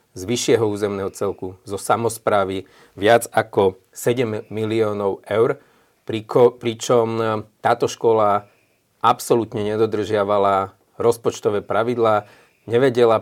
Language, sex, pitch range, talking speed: Slovak, male, 105-115 Hz, 90 wpm